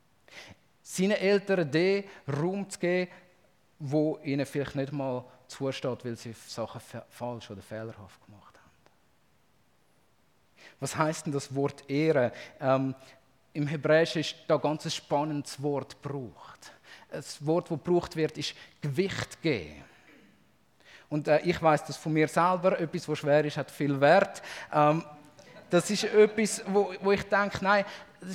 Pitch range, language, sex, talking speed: 150-195 Hz, German, male, 150 wpm